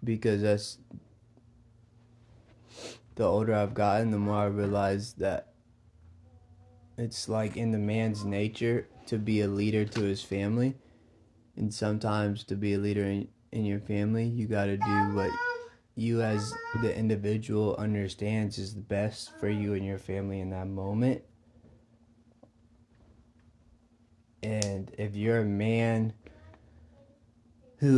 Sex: male